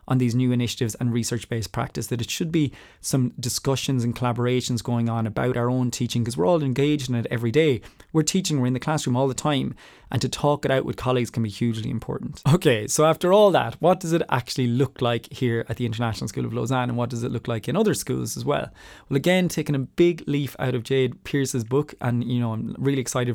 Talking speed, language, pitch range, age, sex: 245 wpm, English, 120-135 Hz, 20-39, male